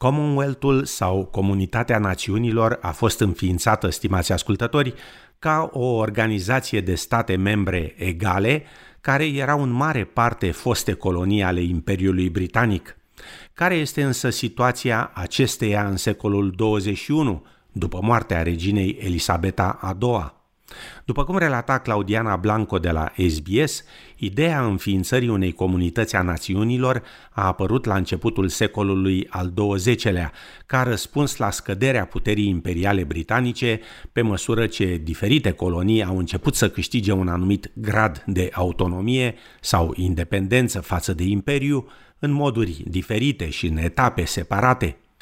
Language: Romanian